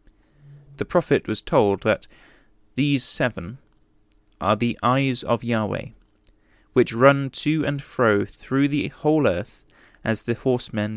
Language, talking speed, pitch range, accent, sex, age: English, 130 wpm, 105-125 Hz, British, male, 20-39